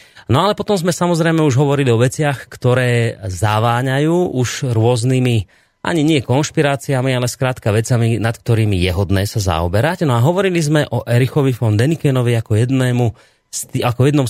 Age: 30-49